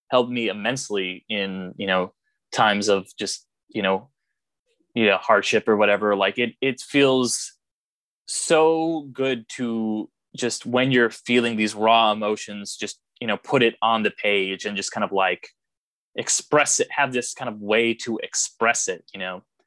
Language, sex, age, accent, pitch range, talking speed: English, male, 20-39, American, 110-125 Hz, 170 wpm